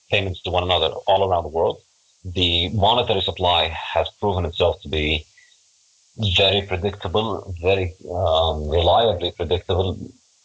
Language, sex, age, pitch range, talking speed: English, male, 30-49, 85-100 Hz, 125 wpm